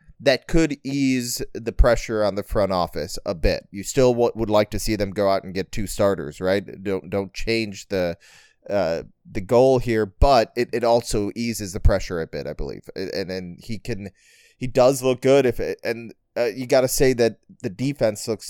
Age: 30-49